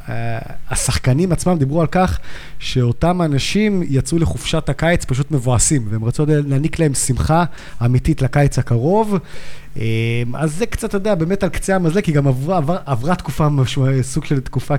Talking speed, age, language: 160 wpm, 20-39, Hebrew